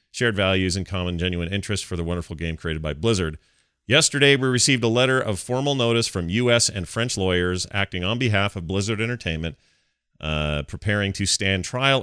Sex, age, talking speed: male, 40-59, 185 wpm